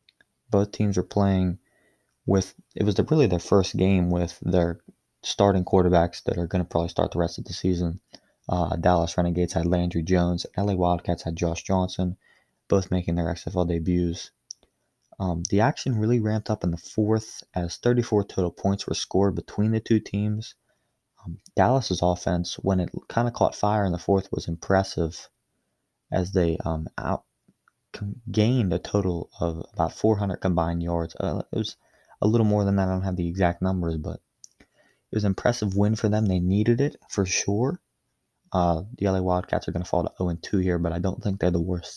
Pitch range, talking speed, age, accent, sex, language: 85-100 Hz, 190 wpm, 20-39, American, male, English